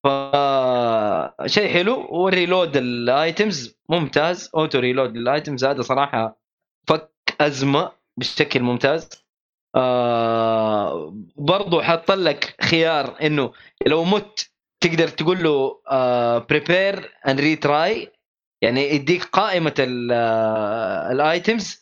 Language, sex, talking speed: Arabic, male, 90 wpm